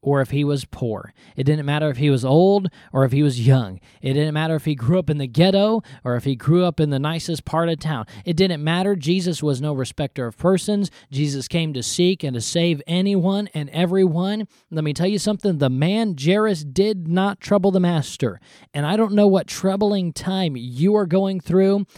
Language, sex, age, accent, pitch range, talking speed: English, male, 20-39, American, 150-200 Hz, 220 wpm